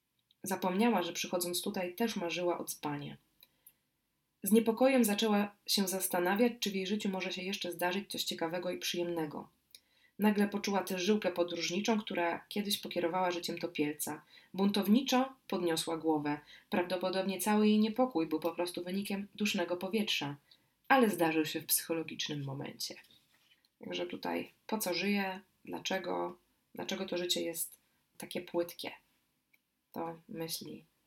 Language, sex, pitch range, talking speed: Polish, female, 165-205 Hz, 130 wpm